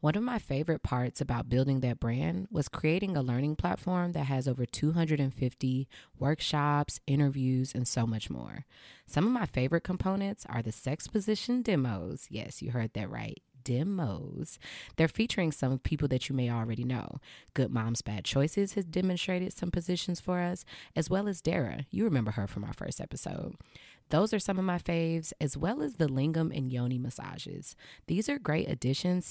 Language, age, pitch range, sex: English, 20-39, 125-175 Hz, female